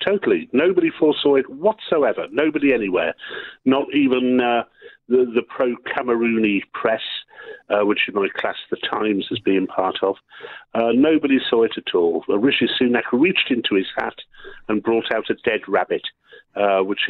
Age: 50-69